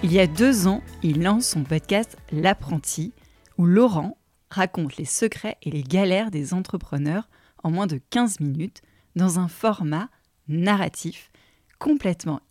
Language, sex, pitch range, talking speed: French, female, 160-220 Hz, 145 wpm